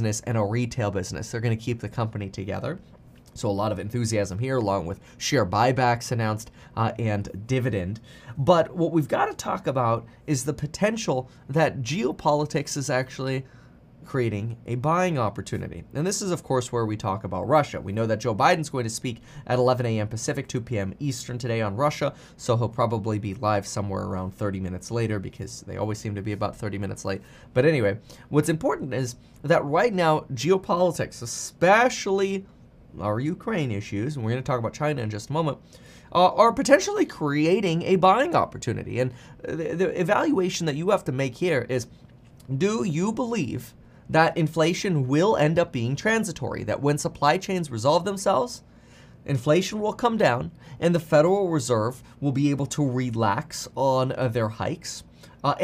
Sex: male